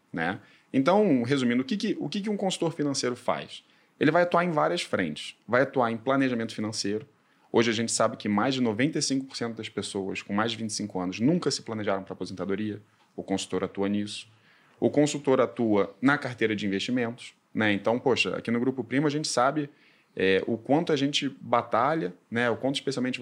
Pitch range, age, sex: 110-145 Hz, 20-39, male